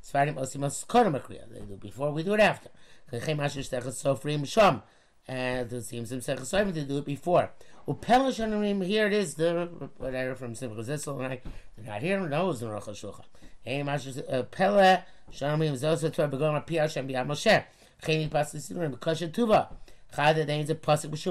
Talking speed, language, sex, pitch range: 80 wpm, English, male, 130-165 Hz